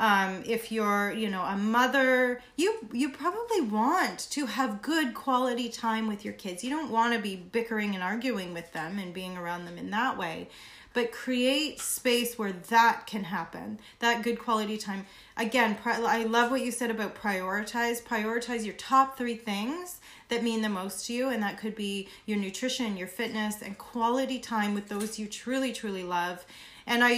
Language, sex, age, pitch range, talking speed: English, female, 30-49, 210-255 Hz, 185 wpm